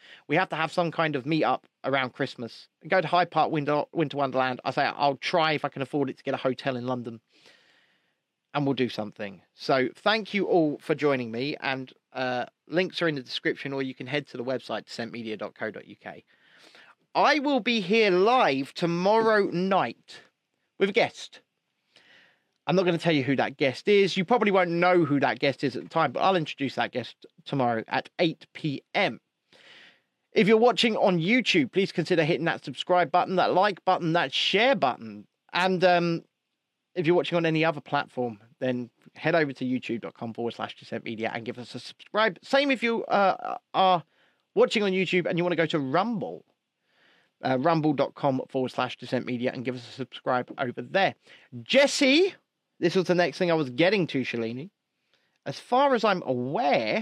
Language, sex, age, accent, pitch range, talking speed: English, male, 30-49, British, 130-180 Hz, 190 wpm